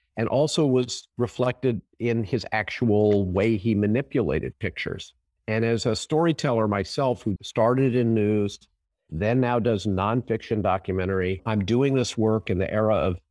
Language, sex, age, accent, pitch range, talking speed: English, male, 50-69, American, 105-135 Hz, 150 wpm